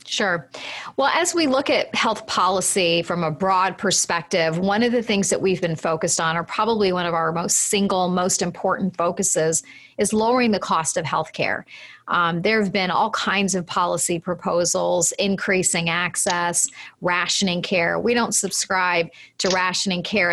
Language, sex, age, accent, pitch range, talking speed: English, female, 40-59, American, 170-195 Hz, 165 wpm